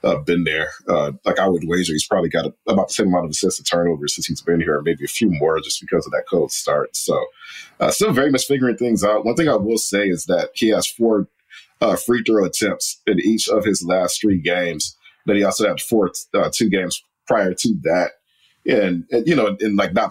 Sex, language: male, English